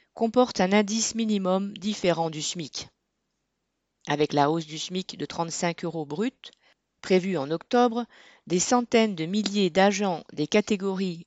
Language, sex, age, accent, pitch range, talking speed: French, female, 40-59, French, 170-220 Hz, 140 wpm